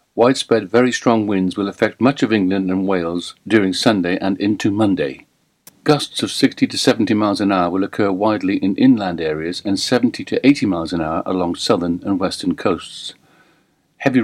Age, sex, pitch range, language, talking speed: 50-69, male, 95-130 Hz, English, 180 wpm